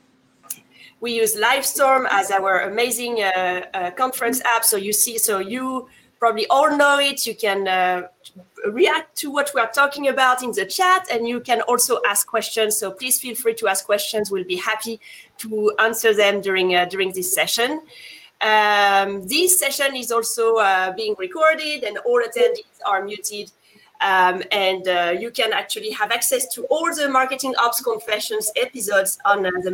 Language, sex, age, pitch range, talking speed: English, female, 30-49, 205-270 Hz, 175 wpm